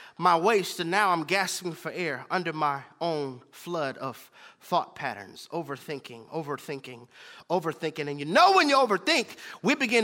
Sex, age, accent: male, 30-49, American